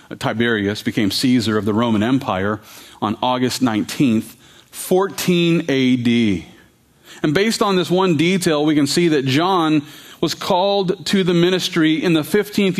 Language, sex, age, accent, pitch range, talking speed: English, male, 40-59, American, 120-160 Hz, 145 wpm